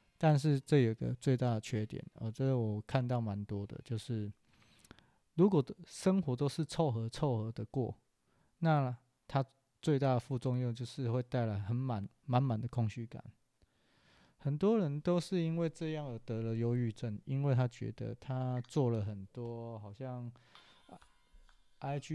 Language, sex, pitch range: Chinese, male, 115-150 Hz